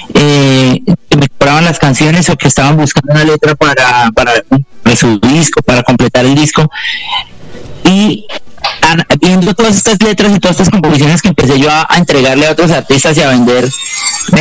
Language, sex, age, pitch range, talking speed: Spanish, male, 30-49, 135-175 Hz, 185 wpm